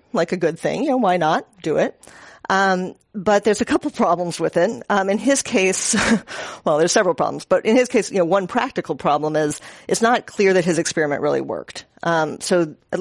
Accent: American